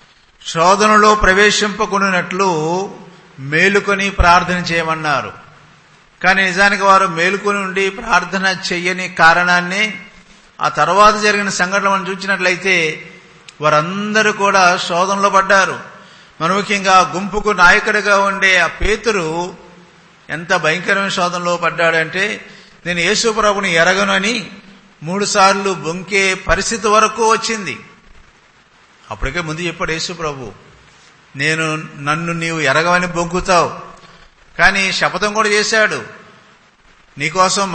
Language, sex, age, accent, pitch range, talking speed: English, male, 50-69, Indian, 165-200 Hz, 65 wpm